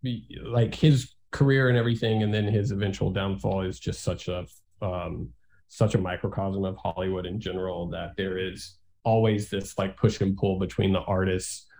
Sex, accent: male, American